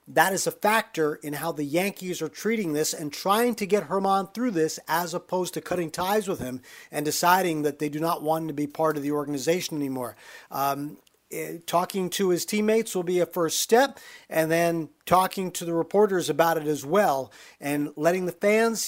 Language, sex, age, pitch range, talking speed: English, male, 50-69, 150-195 Hz, 200 wpm